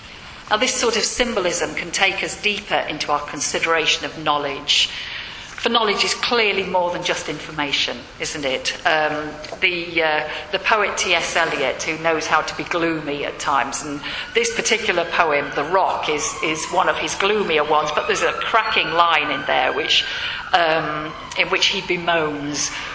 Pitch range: 150-200 Hz